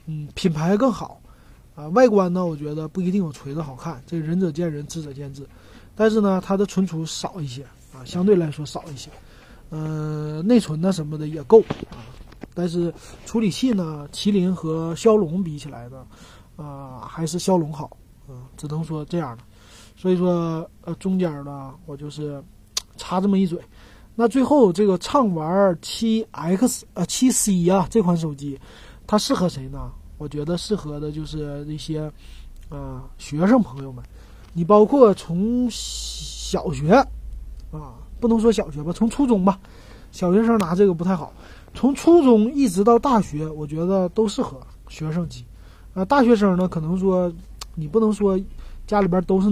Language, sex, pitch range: Chinese, male, 145-200 Hz